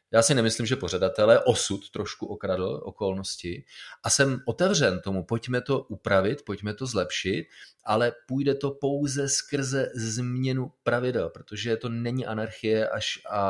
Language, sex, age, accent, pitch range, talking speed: Czech, male, 30-49, native, 100-115 Hz, 140 wpm